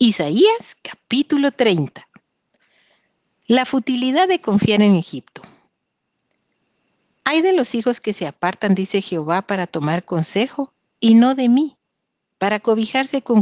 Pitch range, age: 180-245 Hz, 50-69